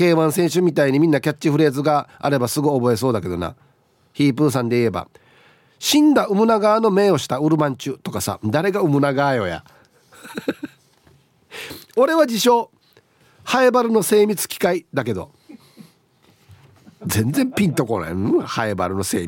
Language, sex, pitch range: Japanese, male, 120-185 Hz